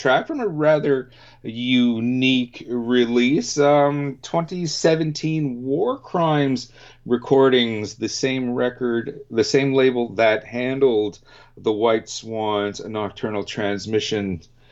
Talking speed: 100 wpm